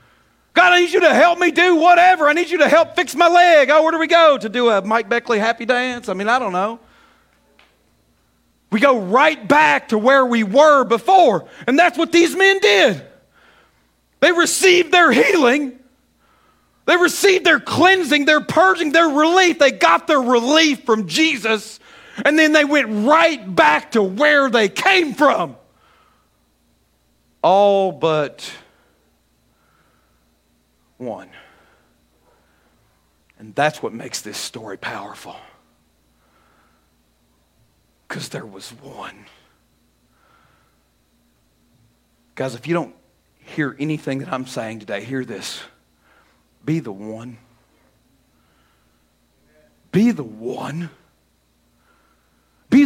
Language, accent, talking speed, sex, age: English, American, 125 wpm, male, 40-59